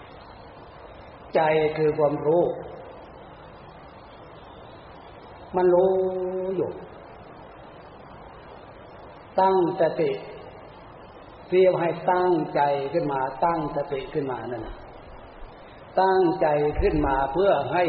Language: Thai